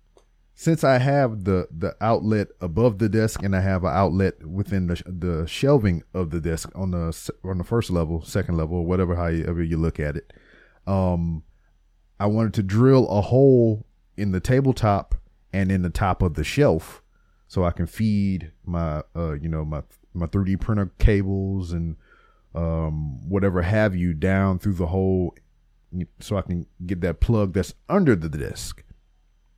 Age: 30-49